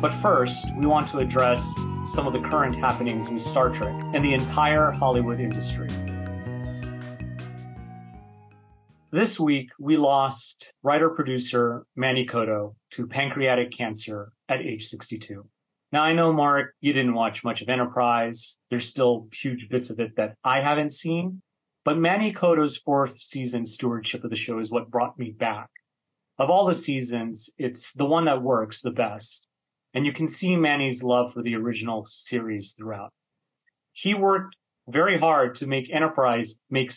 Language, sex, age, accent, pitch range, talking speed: English, male, 30-49, American, 115-140 Hz, 155 wpm